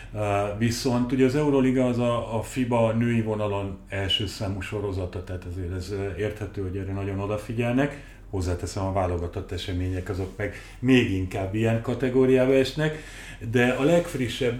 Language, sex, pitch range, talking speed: Hungarian, male, 95-120 Hz, 140 wpm